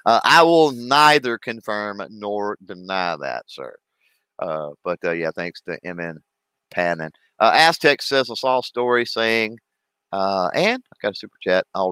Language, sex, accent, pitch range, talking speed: English, male, American, 100-125 Hz, 160 wpm